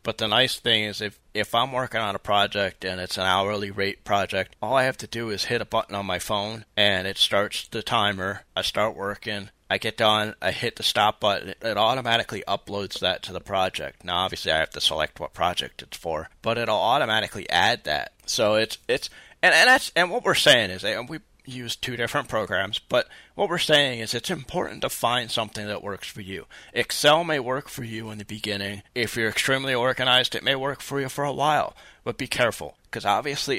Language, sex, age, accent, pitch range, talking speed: English, male, 30-49, American, 105-125 Hz, 220 wpm